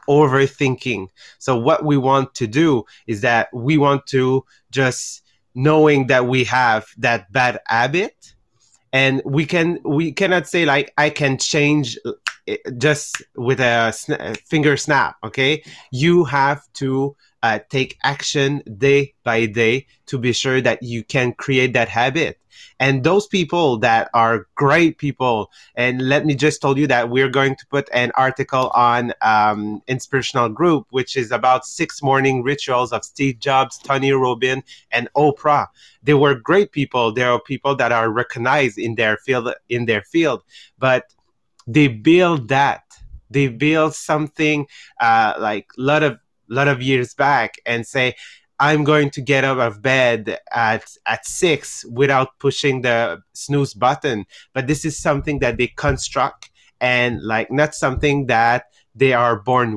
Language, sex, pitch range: English, male, 120-145 Hz